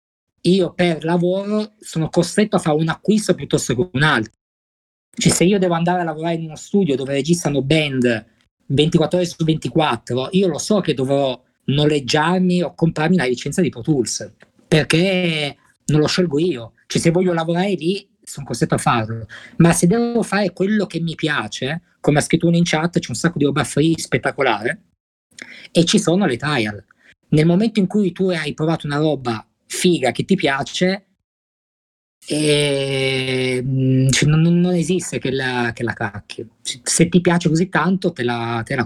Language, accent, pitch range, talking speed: Italian, native, 130-175 Hz, 175 wpm